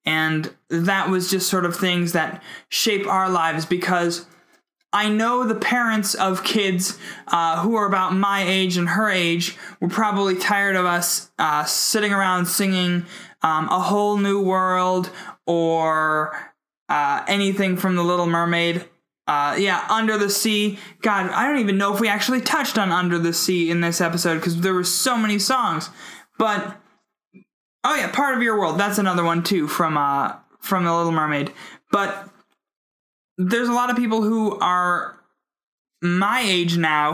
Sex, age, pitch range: male, 20-39, 175-220 Hz